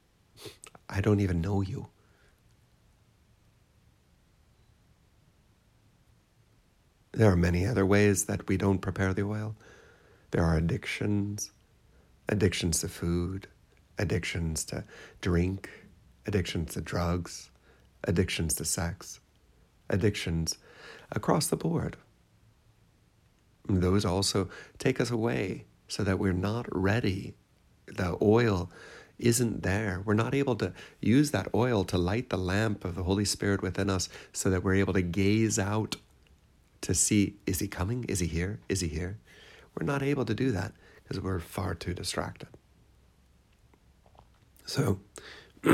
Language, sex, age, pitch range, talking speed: English, male, 60-79, 90-105 Hz, 125 wpm